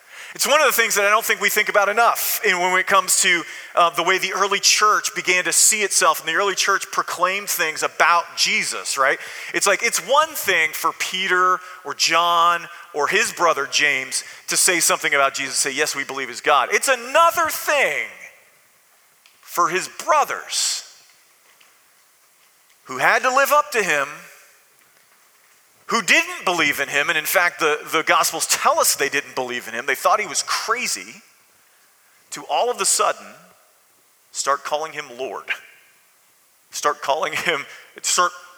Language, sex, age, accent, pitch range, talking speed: English, male, 40-59, American, 155-210 Hz, 170 wpm